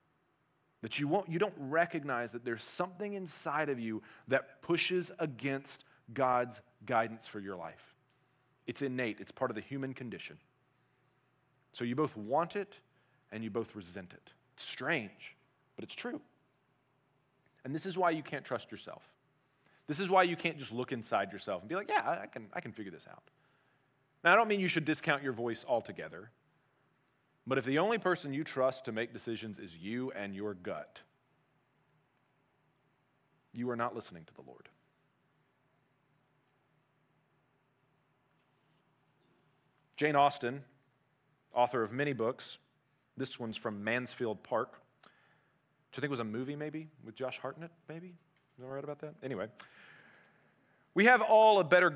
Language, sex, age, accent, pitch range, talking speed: English, male, 30-49, American, 125-155 Hz, 160 wpm